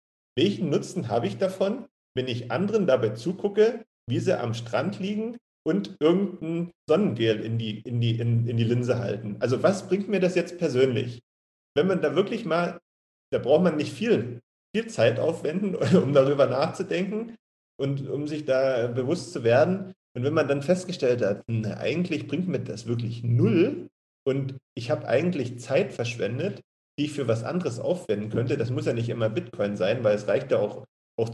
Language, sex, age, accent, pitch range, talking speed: German, male, 40-59, German, 115-175 Hz, 175 wpm